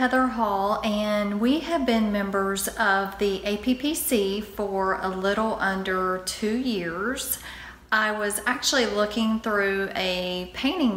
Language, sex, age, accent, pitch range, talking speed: English, female, 30-49, American, 185-220 Hz, 125 wpm